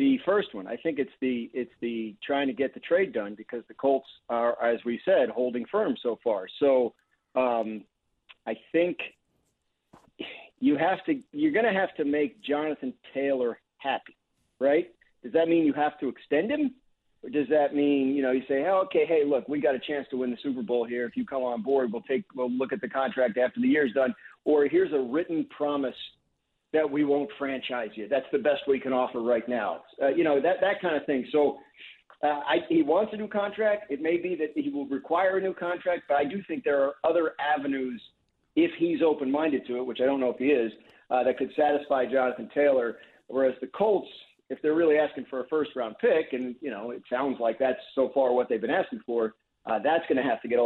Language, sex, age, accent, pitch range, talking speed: English, male, 40-59, American, 125-160 Hz, 225 wpm